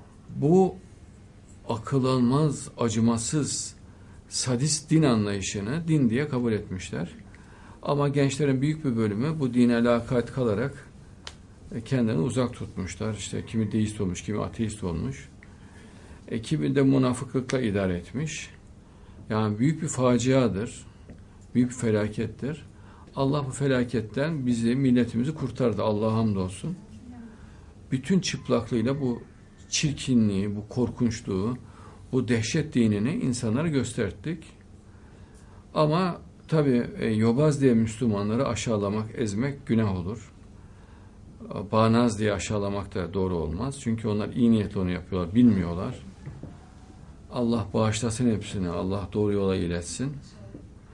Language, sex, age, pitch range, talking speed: Turkish, male, 50-69, 100-125 Hz, 110 wpm